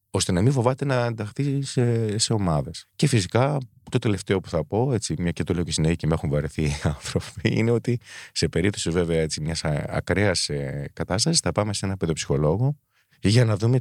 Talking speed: 195 wpm